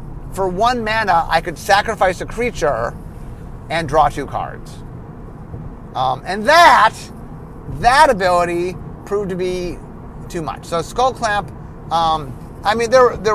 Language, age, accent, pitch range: English, 30-49, American, 145-200 Hz